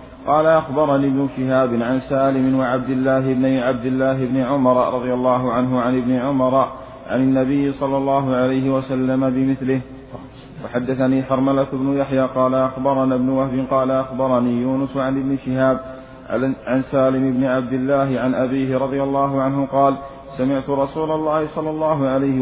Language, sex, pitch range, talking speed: Arabic, male, 130-135 Hz, 155 wpm